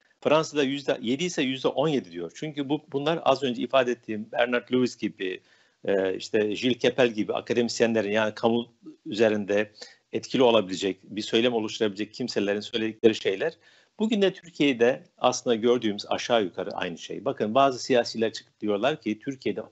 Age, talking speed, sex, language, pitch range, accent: 60-79, 145 wpm, male, Turkish, 110-145 Hz, native